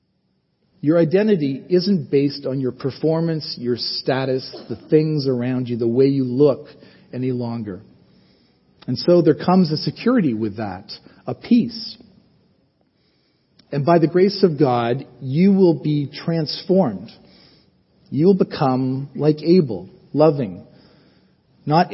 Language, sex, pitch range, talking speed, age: English, male, 125-165 Hz, 125 wpm, 40-59